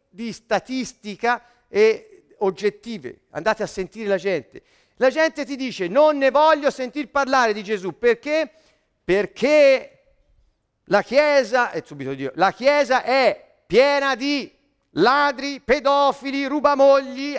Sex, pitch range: male, 235-280 Hz